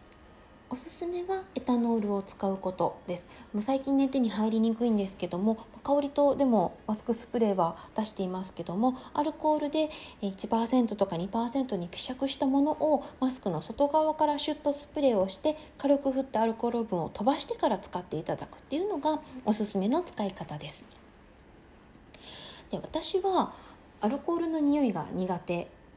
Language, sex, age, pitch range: Japanese, female, 20-39, 195-275 Hz